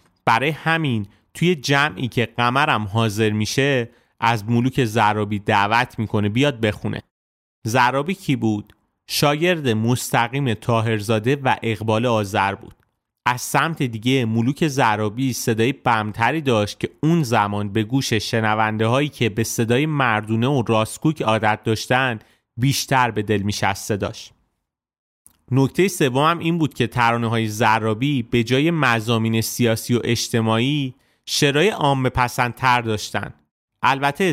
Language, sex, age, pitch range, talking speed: Persian, male, 30-49, 110-135 Hz, 130 wpm